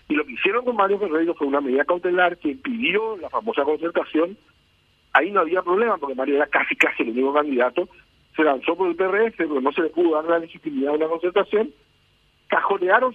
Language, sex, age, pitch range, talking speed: Spanish, male, 50-69, 155-220 Hz, 205 wpm